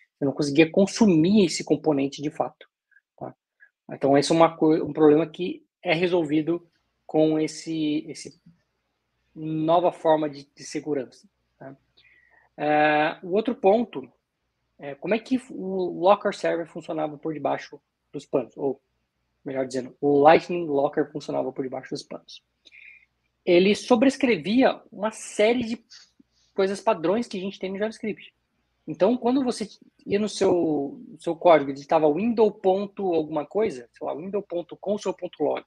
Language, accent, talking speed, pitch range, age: Portuguese, Brazilian, 135 wpm, 150-205 Hz, 20-39